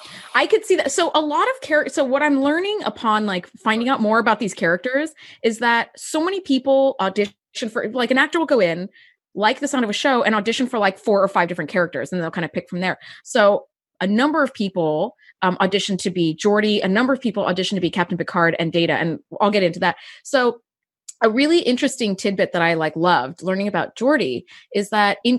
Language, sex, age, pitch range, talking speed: English, female, 20-39, 180-250 Hz, 230 wpm